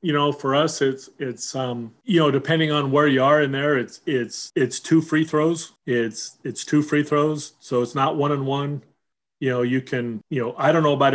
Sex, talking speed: male, 230 wpm